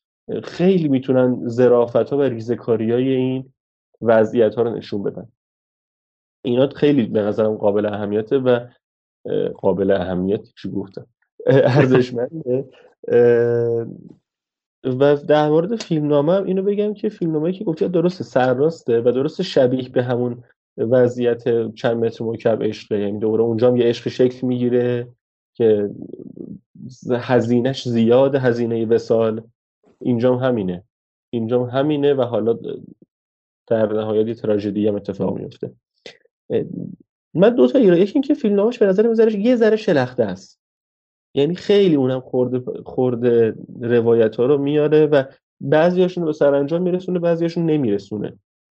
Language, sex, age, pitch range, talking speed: Persian, male, 30-49, 115-145 Hz, 125 wpm